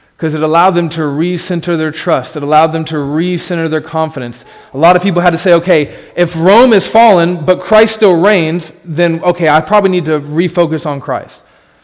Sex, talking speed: male, 205 wpm